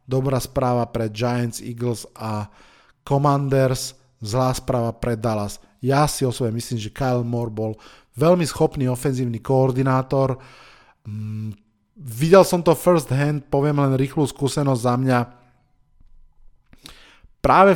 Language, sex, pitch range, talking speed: Slovak, male, 120-140 Hz, 120 wpm